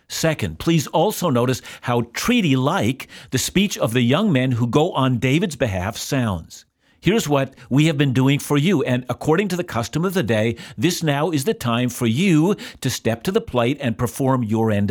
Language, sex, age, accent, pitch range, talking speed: English, male, 50-69, American, 115-155 Hz, 200 wpm